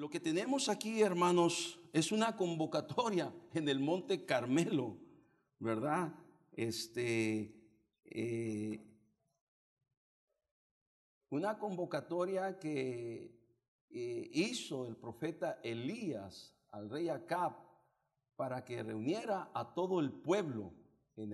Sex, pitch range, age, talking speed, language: male, 120-180 Hz, 50-69, 95 wpm, English